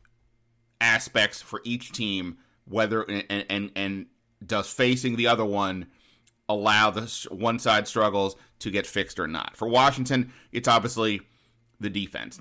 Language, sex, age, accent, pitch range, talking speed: English, male, 30-49, American, 95-115 Hz, 140 wpm